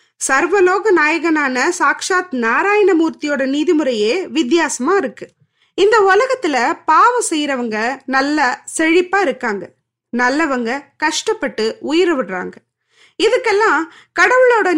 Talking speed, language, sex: 85 wpm, Tamil, female